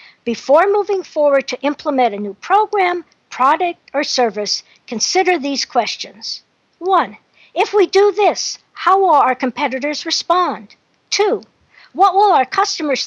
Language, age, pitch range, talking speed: English, 60-79, 240-350 Hz, 135 wpm